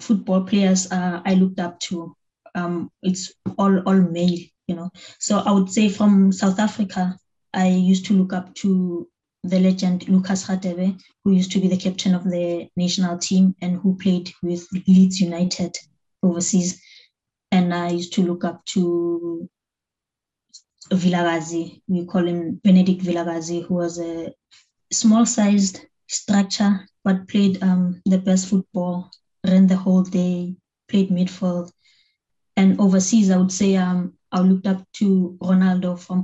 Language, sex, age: English, female, 20-39